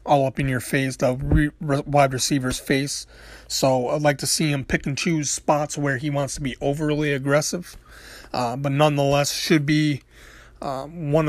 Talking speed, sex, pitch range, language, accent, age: 175 wpm, male, 130-150 Hz, English, American, 30-49